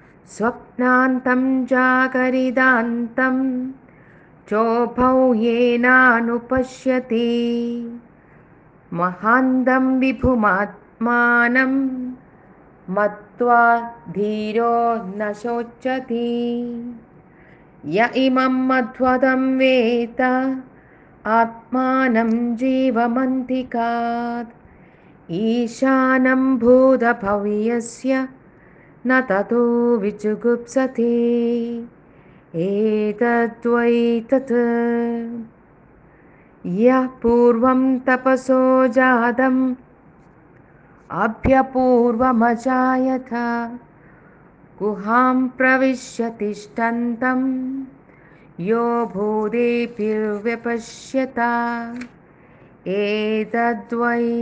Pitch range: 230-255 Hz